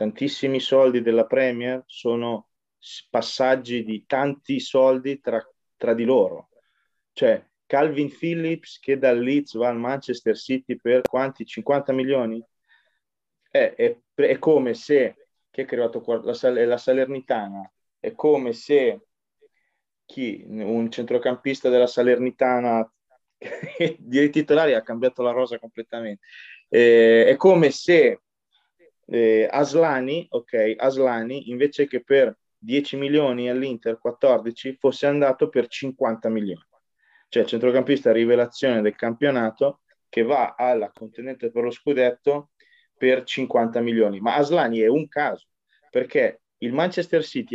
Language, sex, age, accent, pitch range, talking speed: Italian, male, 30-49, native, 115-150 Hz, 125 wpm